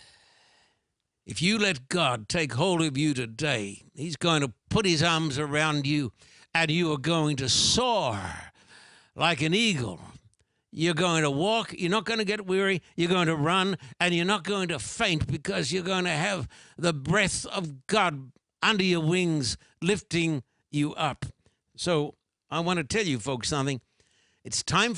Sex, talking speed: male, 170 wpm